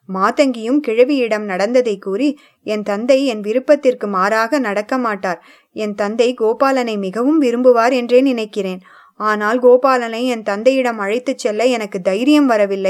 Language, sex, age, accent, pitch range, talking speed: English, female, 20-39, Indian, 210-275 Hz, 120 wpm